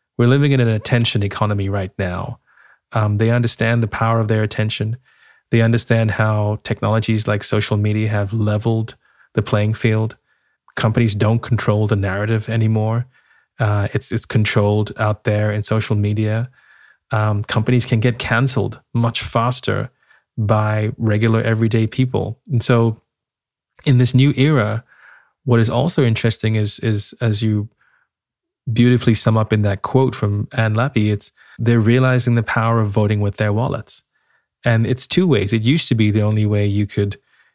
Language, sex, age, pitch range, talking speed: English, male, 20-39, 105-120 Hz, 160 wpm